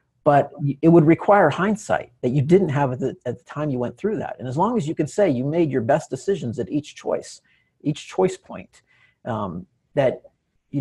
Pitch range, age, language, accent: 120-155 Hz, 30-49, English, American